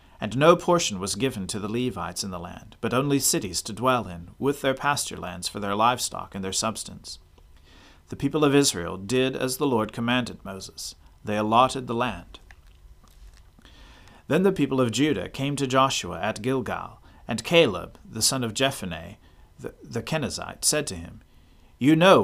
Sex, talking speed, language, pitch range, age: male, 175 wpm, English, 95-135 Hz, 40-59